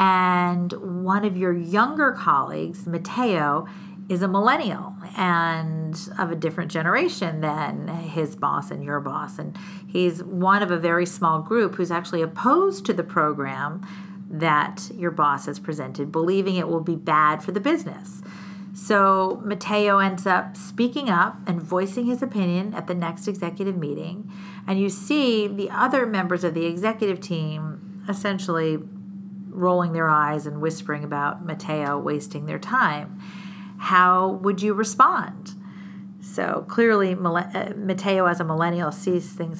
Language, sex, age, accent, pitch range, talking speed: English, female, 40-59, American, 170-200 Hz, 145 wpm